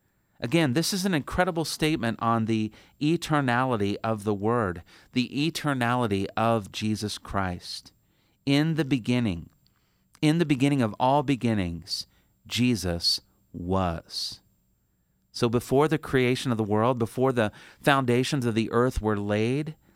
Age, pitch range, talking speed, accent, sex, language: 40-59, 100-130 Hz, 130 wpm, American, male, English